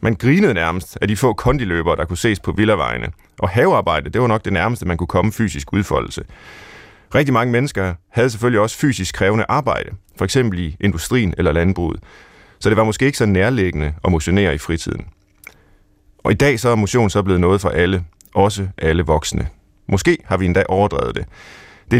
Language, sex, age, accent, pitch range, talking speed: Danish, male, 30-49, native, 90-115 Hz, 190 wpm